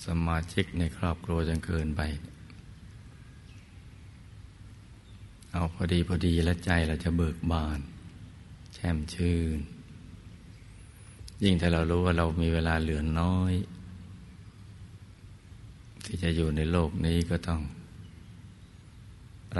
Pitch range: 80-100 Hz